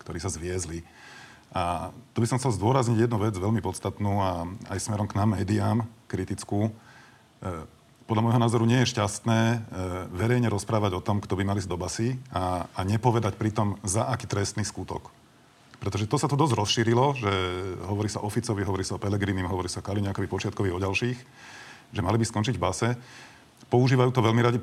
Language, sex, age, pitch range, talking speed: Slovak, male, 40-59, 95-120 Hz, 185 wpm